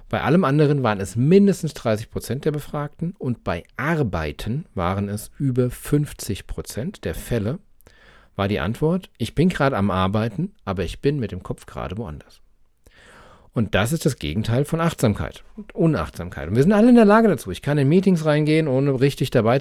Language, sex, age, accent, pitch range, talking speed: German, male, 40-59, German, 95-135 Hz, 185 wpm